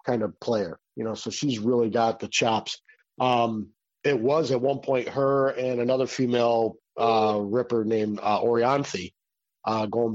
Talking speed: 165 wpm